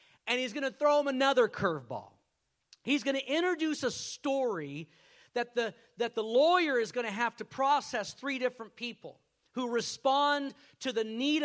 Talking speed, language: 175 wpm, English